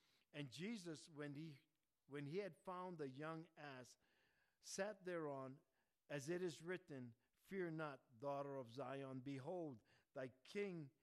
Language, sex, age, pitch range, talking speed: English, male, 50-69, 130-170 Hz, 135 wpm